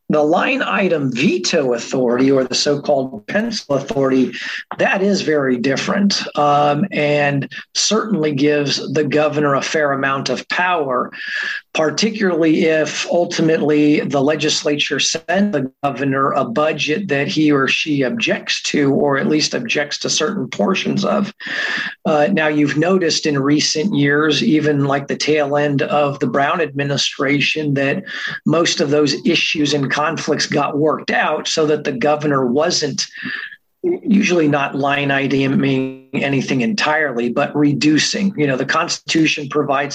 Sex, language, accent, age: male, English, American, 40-59